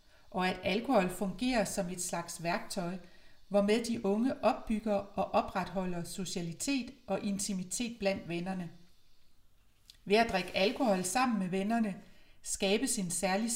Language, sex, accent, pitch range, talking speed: Danish, female, native, 185-225 Hz, 130 wpm